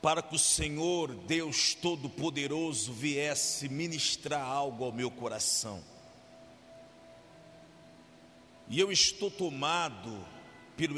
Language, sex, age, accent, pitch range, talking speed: Portuguese, male, 50-69, Brazilian, 115-160 Hz, 95 wpm